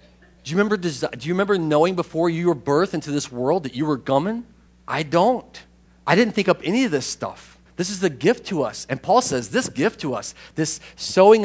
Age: 40-59